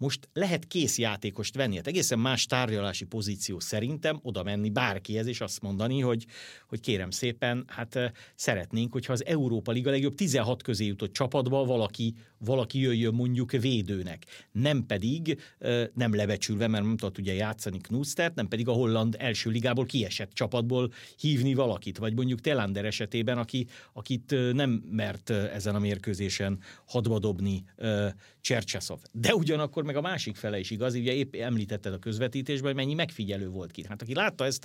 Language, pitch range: Hungarian, 105-140 Hz